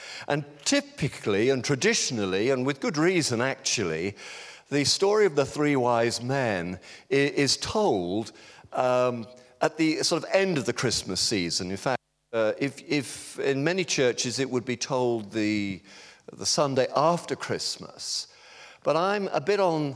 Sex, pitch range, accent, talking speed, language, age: male, 110-145 Hz, British, 150 wpm, English, 50-69